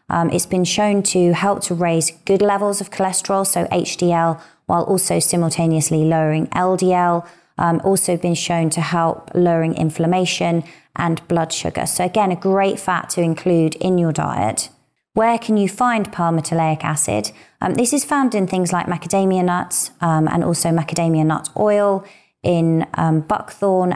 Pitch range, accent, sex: 160-180 Hz, British, female